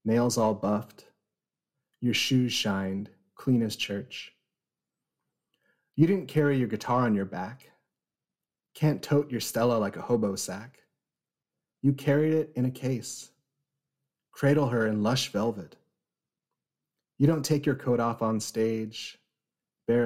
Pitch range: 110-140 Hz